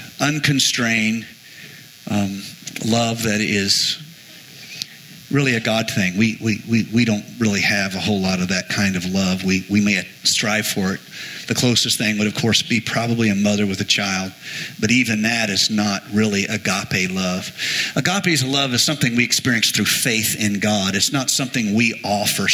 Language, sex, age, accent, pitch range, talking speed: English, male, 50-69, American, 105-130 Hz, 175 wpm